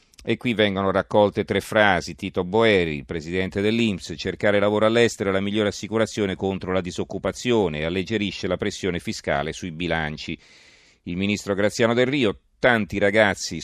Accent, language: native, Italian